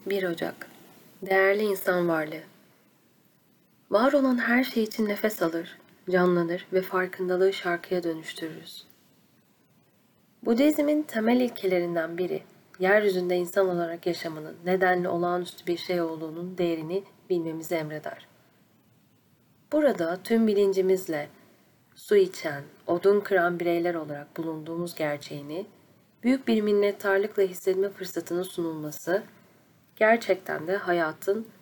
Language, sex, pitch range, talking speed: Turkish, female, 170-205 Hz, 100 wpm